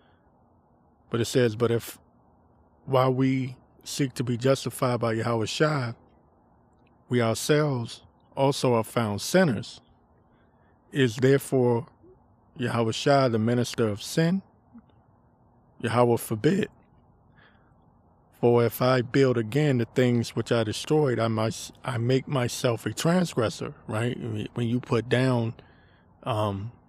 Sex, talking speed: male, 115 wpm